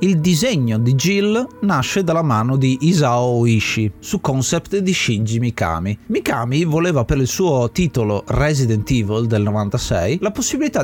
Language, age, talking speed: Italian, 30-49, 150 wpm